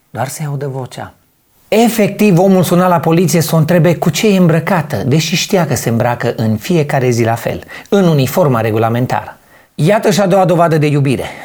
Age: 30-49